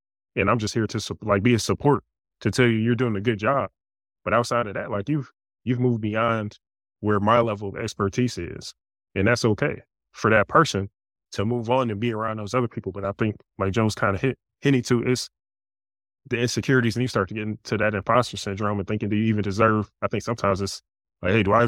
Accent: American